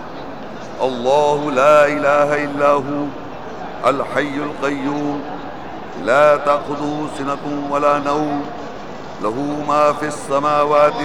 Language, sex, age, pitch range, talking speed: English, male, 50-69, 145-155 Hz, 85 wpm